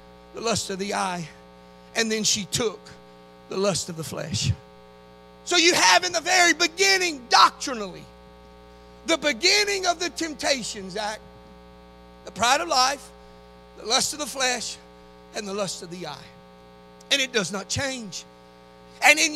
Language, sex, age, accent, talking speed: English, male, 50-69, American, 155 wpm